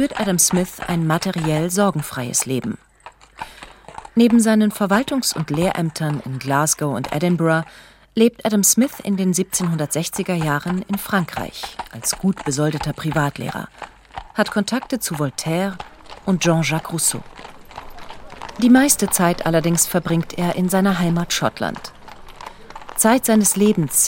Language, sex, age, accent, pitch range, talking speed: German, female, 40-59, German, 150-205 Hz, 120 wpm